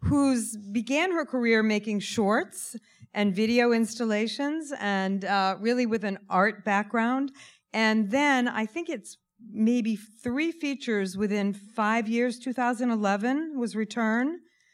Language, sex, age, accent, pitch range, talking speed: English, female, 40-59, American, 190-230 Hz, 120 wpm